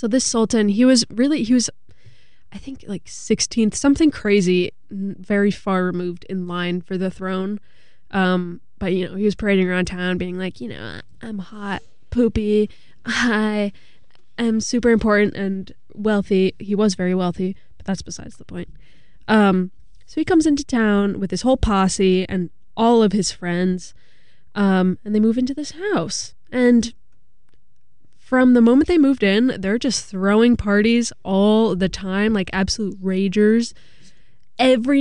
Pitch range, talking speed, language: 185-225 Hz, 160 wpm, English